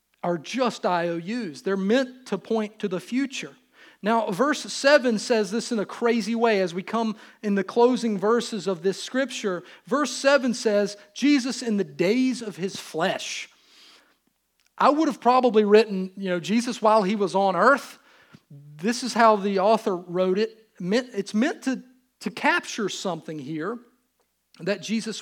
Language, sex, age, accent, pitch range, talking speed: English, male, 40-59, American, 185-240 Hz, 160 wpm